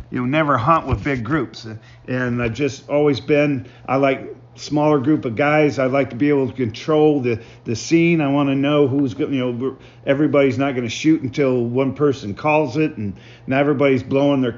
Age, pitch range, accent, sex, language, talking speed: 50-69, 120-150 Hz, American, male, English, 210 wpm